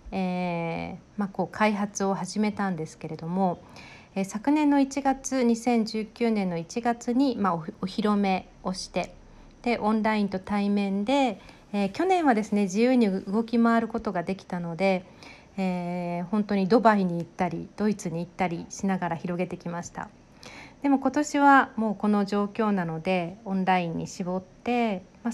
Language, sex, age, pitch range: Japanese, female, 50-69, 180-230 Hz